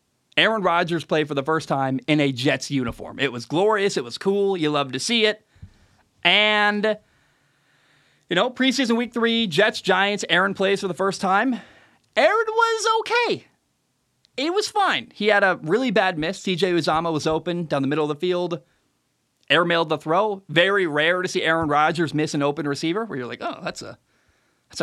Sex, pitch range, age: male, 145-200 Hz, 20-39